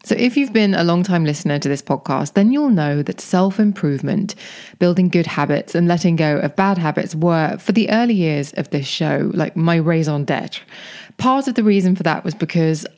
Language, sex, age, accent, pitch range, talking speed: English, female, 20-39, British, 155-195 Hz, 205 wpm